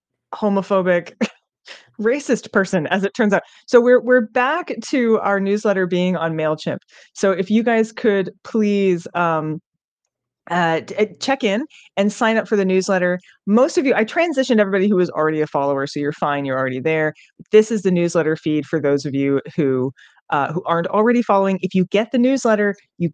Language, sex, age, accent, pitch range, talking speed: English, female, 20-39, American, 170-220 Hz, 185 wpm